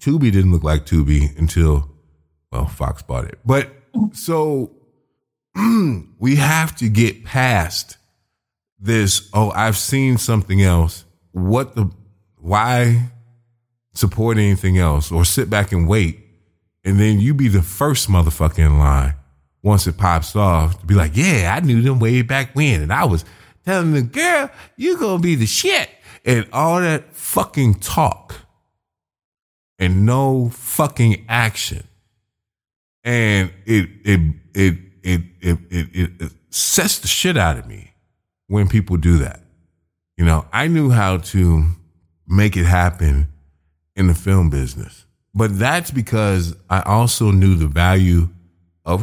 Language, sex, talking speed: English, male, 145 wpm